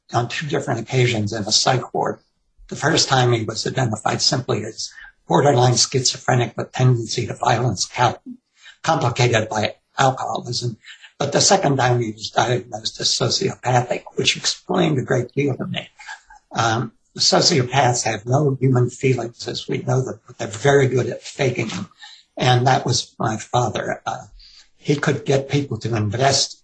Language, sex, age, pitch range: English, male, 60-79, 115-135 Hz